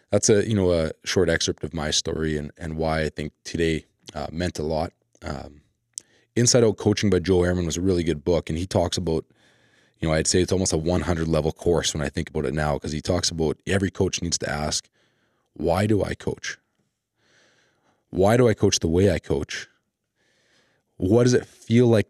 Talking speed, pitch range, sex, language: 210 wpm, 80-100 Hz, male, English